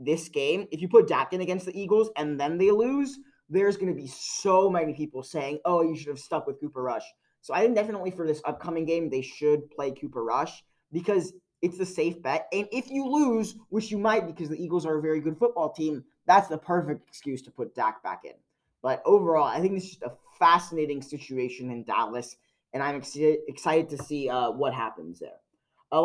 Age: 20-39